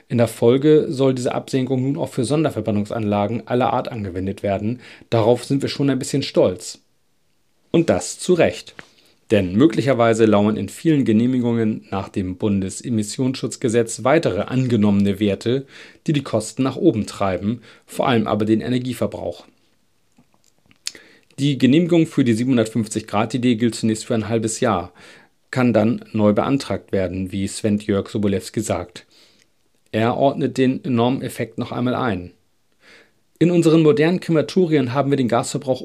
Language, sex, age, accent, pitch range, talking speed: German, male, 40-59, German, 110-135 Hz, 140 wpm